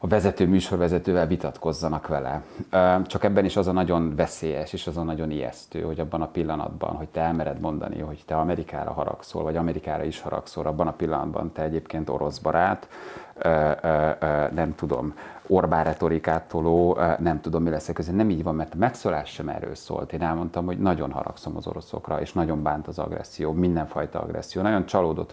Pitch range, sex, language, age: 80-95 Hz, male, Hungarian, 30-49